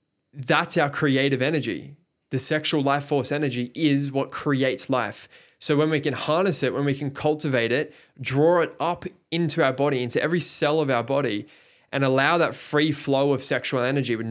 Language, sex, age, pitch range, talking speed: English, male, 20-39, 125-145 Hz, 190 wpm